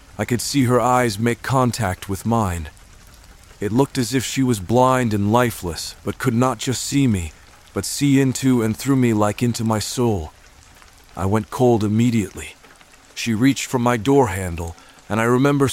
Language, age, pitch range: English, 40-59, 100-125 Hz